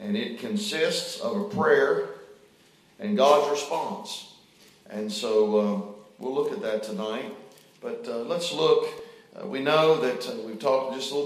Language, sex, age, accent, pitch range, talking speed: English, male, 40-59, American, 125-205 Hz, 165 wpm